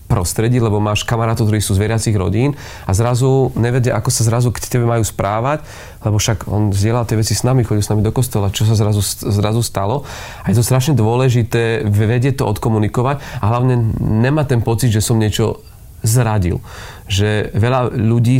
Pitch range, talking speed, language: 105-120 Hz, 185 wpm, Slovak